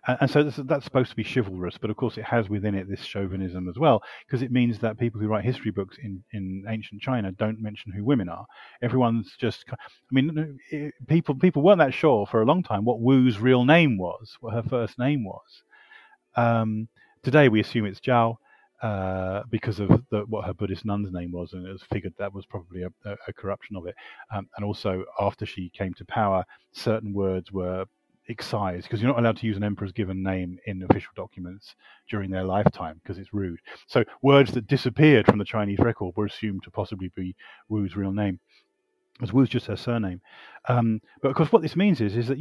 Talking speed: 210 wpm